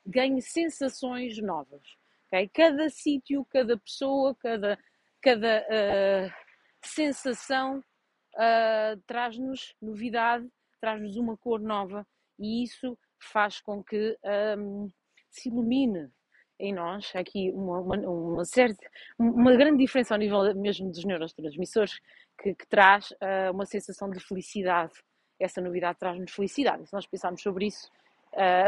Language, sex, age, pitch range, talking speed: Portuguese, female, 30-49, 195-245 Hz, 110 wpm